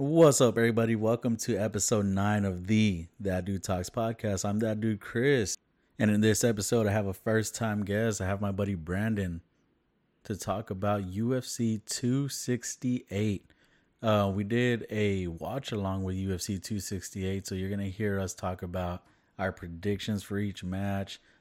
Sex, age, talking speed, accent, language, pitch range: male, 30-49, 165 wpm, American, English, 95-110 Hz